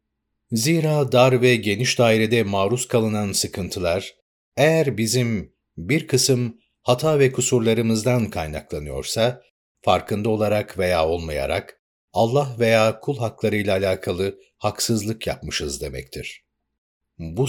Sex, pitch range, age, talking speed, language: male, 100-125 Hz, 60-79, 100 wpm, Turkish